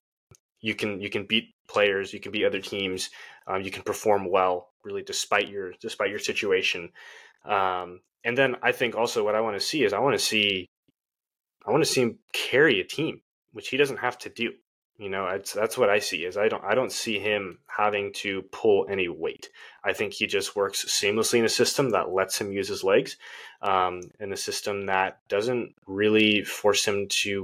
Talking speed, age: 210 wpm, 20-39